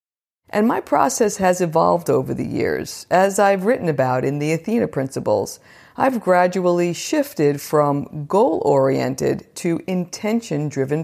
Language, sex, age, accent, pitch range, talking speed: English, female, 50-69, American, 150-205 Hz, 125 wpm